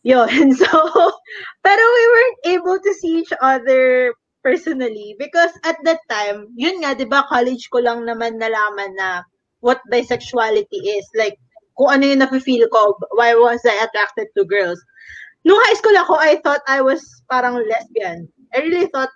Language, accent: English, Filipino